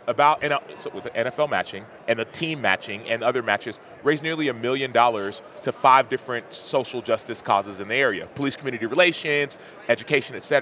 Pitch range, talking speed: 115-150 Hz, 175 wpm